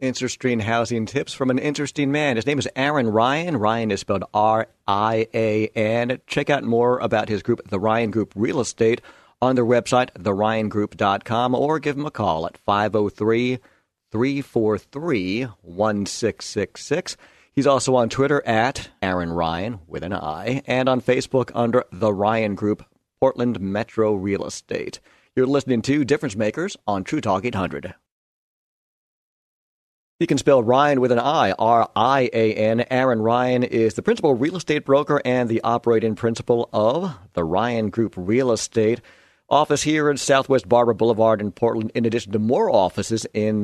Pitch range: 105-130 Hz